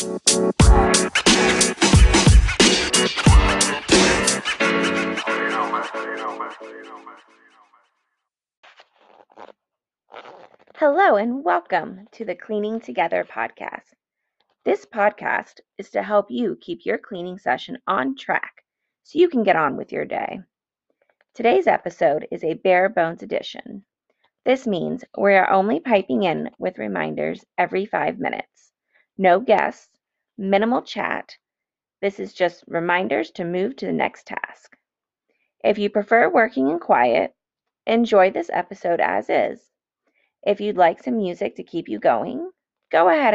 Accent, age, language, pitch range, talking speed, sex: American, 30-49, English, 170-225 Hz, 115 wpm, female